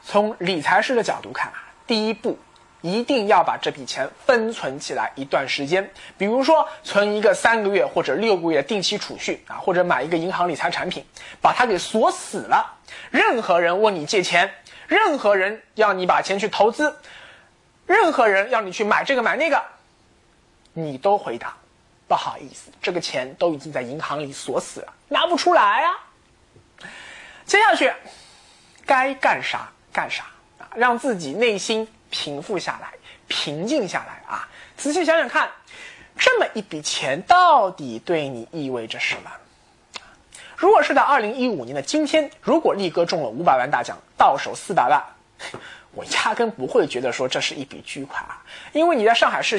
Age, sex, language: 20-39, male, Chinese